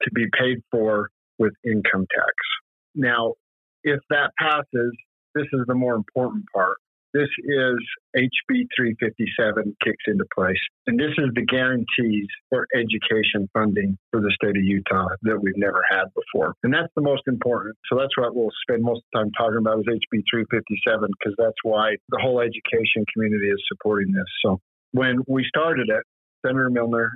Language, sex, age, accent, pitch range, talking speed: English, male, 50-69, American, 105-125 Hz, 170 wpm